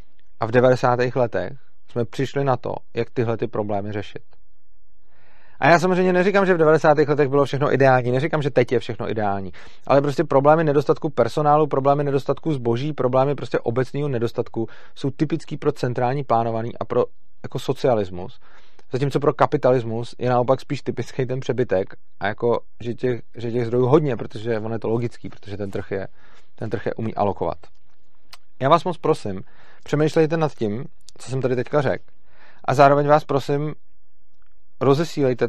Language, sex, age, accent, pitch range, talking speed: Czech, male, 30-49, native, 115-145 Hz, 165 wpm